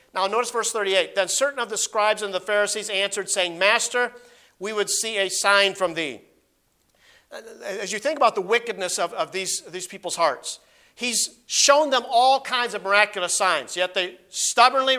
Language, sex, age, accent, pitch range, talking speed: English, male, 50-69, American, 195-240 Hz, 180 wpm